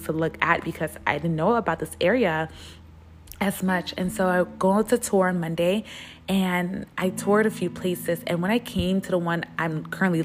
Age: 20-39